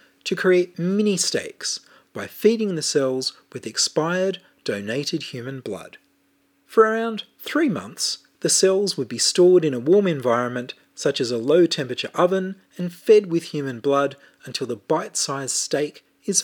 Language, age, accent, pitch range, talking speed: English, 40-59, Australian, 130-190 Hz, 145 wpm